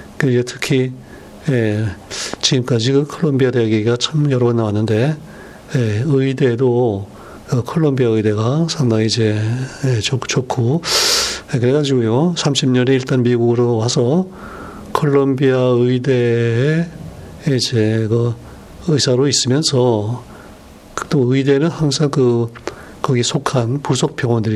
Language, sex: Korean, male